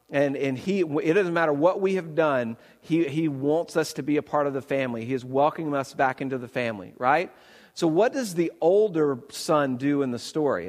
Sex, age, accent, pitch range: male, 50-69, American, 140-190 Hz